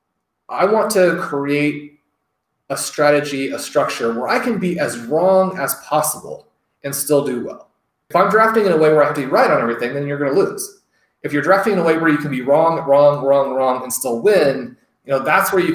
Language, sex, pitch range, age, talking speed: English, male, 120-150 Hz, 30-49, 235 wpm